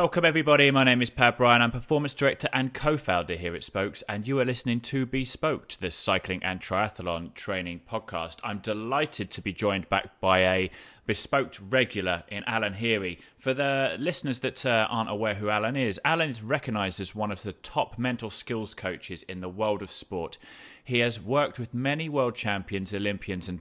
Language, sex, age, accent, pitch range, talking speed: English, male, 30-49, British, 95-130 Hz, 190 wpm